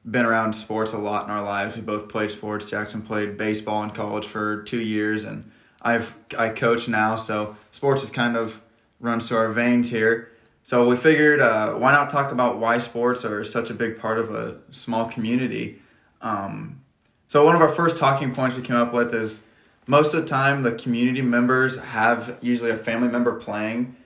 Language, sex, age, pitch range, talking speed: English, male, 20-39, 105-120 Hz, 200 wpm